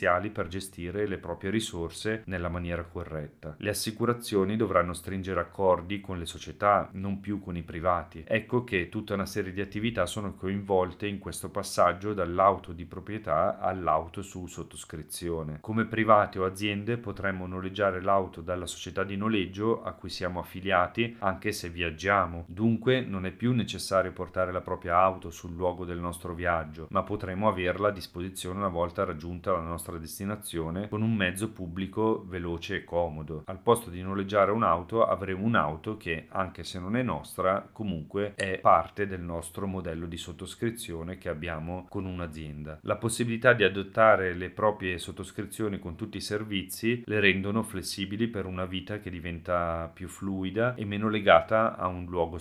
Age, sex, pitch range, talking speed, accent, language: 40-59, male, 85-105 Hz, 160 wpm, native, Italian